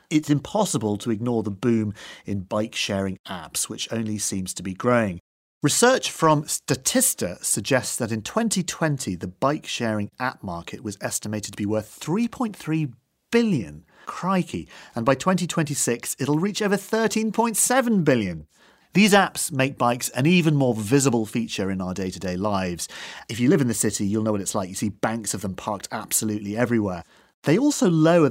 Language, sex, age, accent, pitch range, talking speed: English, male, 40-59, British, 105-155 Hz, 165 wpm